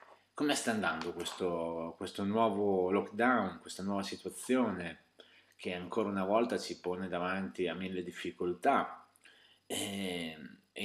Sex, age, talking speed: male, 30-49, 115 wpm